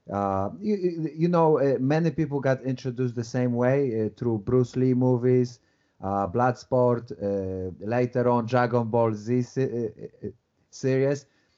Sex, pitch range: male, 115-145 Hz